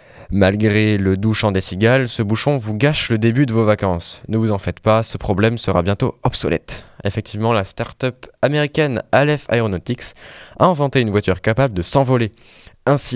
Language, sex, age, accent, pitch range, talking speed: French, male, 20-39, French, 95-120 Hz, 180 wpm